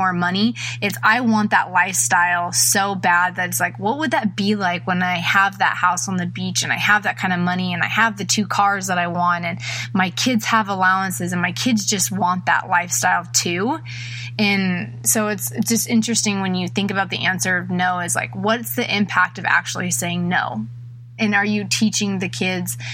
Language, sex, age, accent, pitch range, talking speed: English, female, 20-39, American, 175-200 Hz, 215 wpm